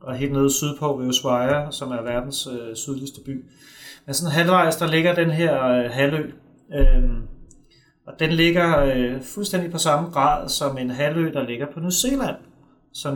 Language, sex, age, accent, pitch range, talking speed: Danish, male, 30-49, native, 125-160 Hz, 175 wpm